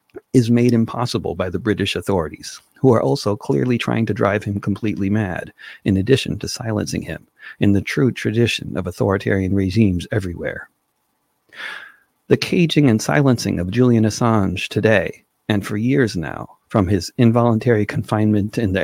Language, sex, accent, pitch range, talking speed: English, male, American, 95-120 Hz, 155 wpm